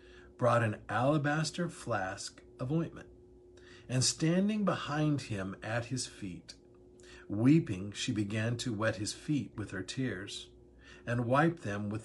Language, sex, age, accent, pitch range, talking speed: English, male, 50-69, American, 100-125 Hz, 135 wpm